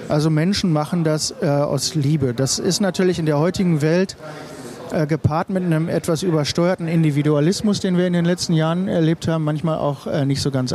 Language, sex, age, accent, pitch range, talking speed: German, male, 40-59, German, 145-180 Hz, 195 wpm